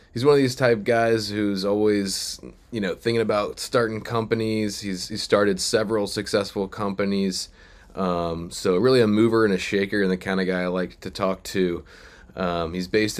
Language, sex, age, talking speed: English, male, 20-39, 180 wpm